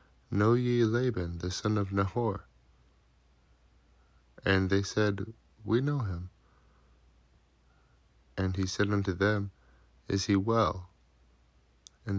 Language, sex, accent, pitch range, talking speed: English, male, American, 70-100 Hz, 110 wpm